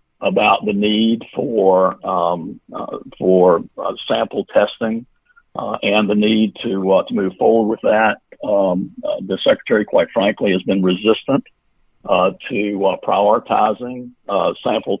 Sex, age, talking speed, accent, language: male, 50-69, 145 wpm, American, English